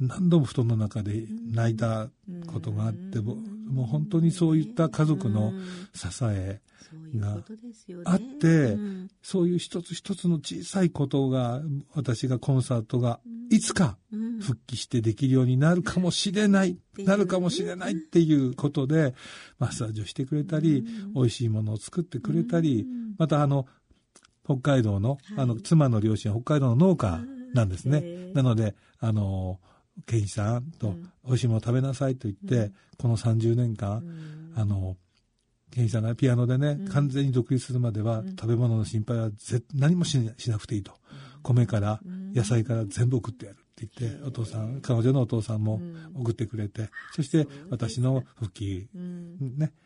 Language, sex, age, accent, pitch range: Japanese, male, 60-79, native, 115-160 Hz